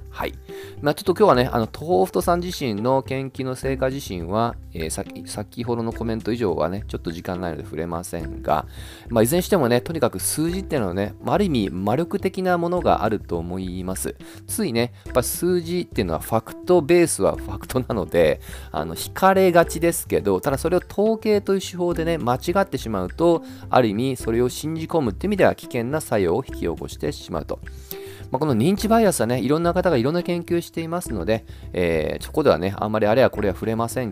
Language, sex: Japanese, male